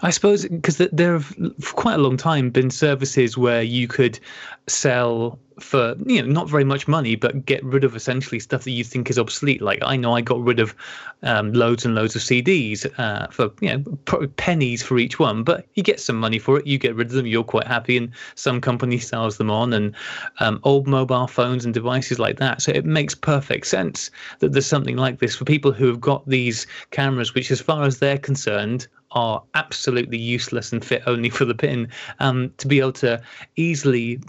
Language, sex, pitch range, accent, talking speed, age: English, male, 120-145 Hz, British, 215 wpm, 30-49